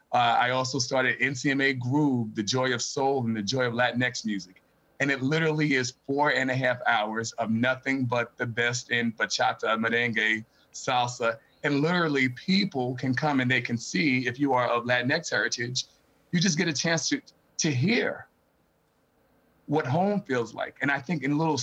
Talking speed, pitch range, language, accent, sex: 185 wpm, 125-145 Hz, English, American, male